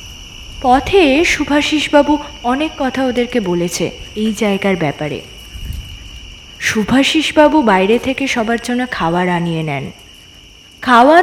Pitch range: 200-310 Hz